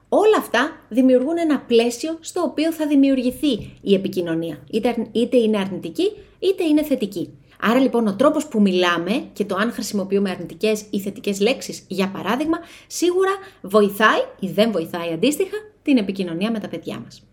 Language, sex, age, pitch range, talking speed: Greek, female, 30-49, 190-280 Hz, 155 wpm